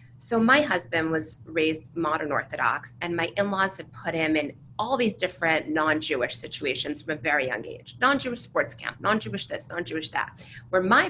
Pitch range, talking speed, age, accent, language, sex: 150-215 Hz, 180 wpm, 30-49, American, English, female